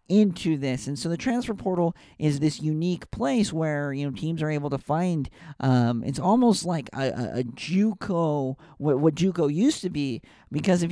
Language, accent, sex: English, American, male